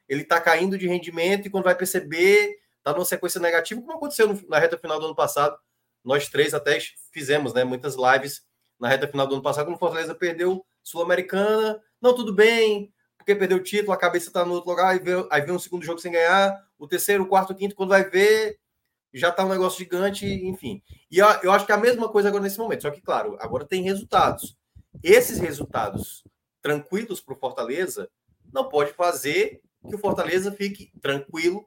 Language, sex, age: Portuguese, male, 20-39